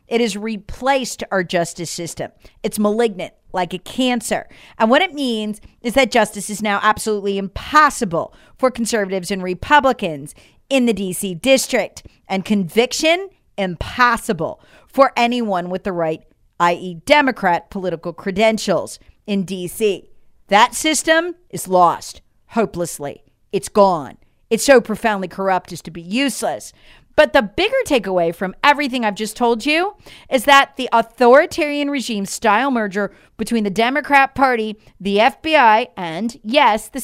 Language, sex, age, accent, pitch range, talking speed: English, female, 40-59, American, 195-260 Hz, 140 wpm